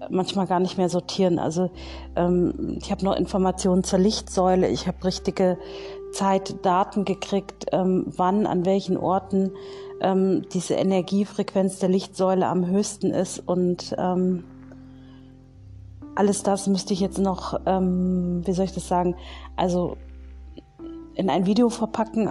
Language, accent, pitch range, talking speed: German, German, 180-200 Hz, 135 wpm